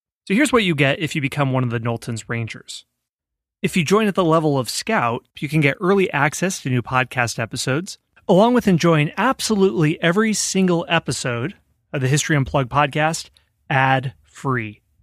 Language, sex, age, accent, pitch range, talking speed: English, male, 30-49, American, 125-170 Hz, 170 wpm